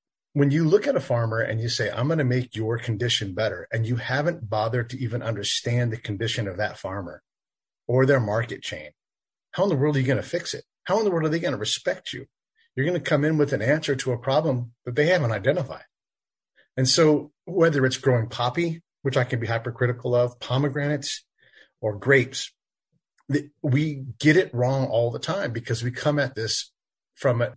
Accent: American